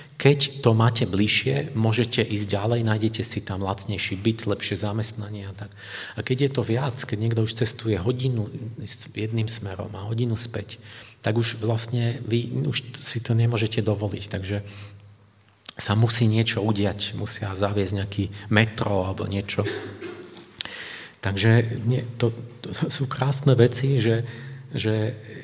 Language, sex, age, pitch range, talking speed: Czech, male, 40-59, 105-130 Hz, 135 wpm